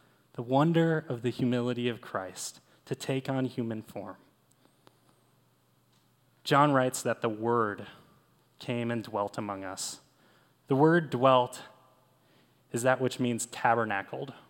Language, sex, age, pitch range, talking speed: English, male, 20-39, 115-140 Hz, 125 wpm